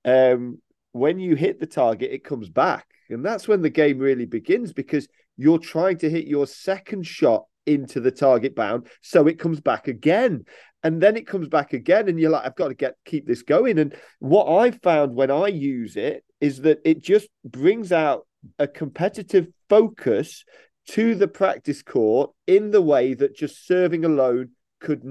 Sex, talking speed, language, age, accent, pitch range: male, 185 wpm, English, 40-59, British, 145-205 Hz